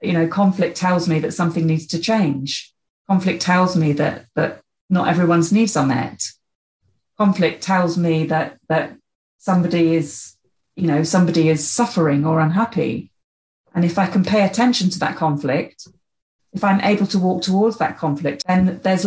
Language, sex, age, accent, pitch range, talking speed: English, female, 40-59, British, 160-200 Hz, 165 wpm